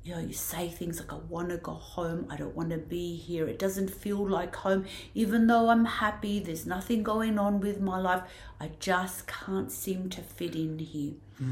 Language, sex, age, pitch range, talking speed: English, female, 60-79, 165-200 Hz, 215 wpm